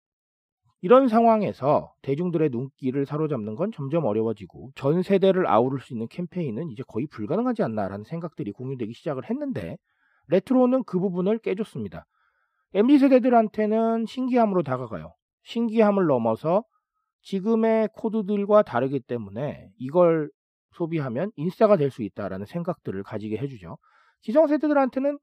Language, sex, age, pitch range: Korean, male, 40-59, 130-210 Hz